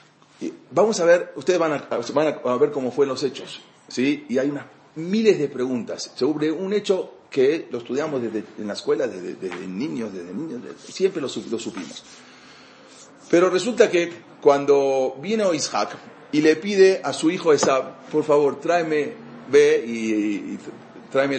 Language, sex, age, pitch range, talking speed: English, male, 40-59, 130-180 Hz, 170 wpm